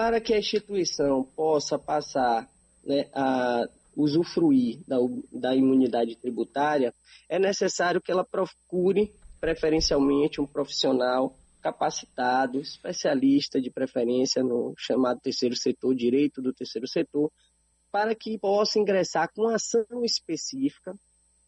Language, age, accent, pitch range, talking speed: Portuguese, 20-39, Brazilian, 135-205 Hz, 110 wpm